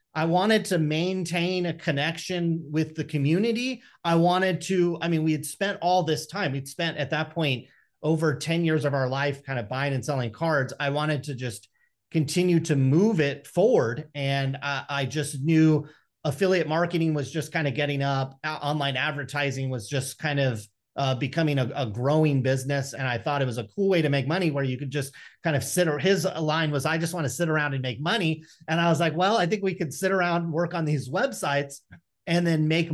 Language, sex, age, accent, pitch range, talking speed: English, male, 30-49, American, 135-165 Hz, 220 wpm